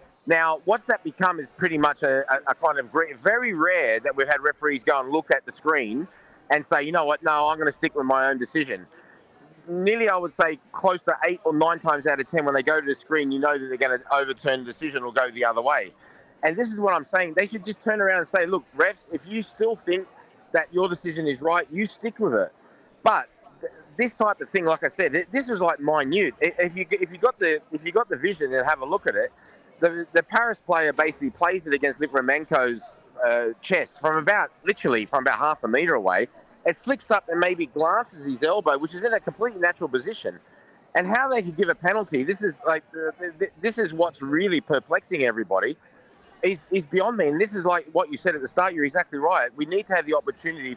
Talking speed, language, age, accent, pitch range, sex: 240 wpm, English, 30-49, Australian, 150-215 Hz, male